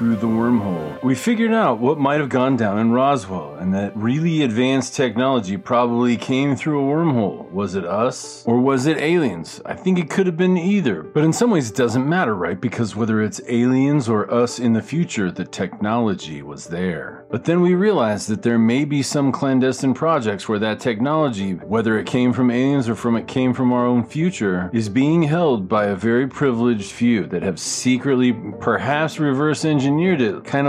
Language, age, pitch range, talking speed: English, 40-59, 115-150 Hz, 195 wpm